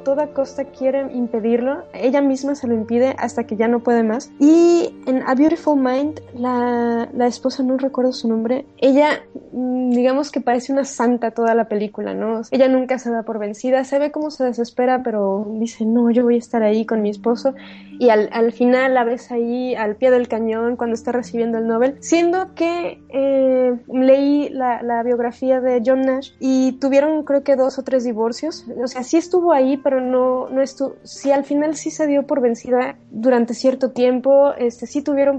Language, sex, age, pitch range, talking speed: Spanish, female, 20-39, 235-275 Hz, 200 wpm